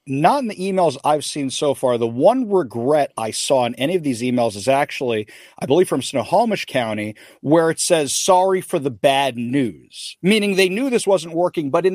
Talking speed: 205 wpm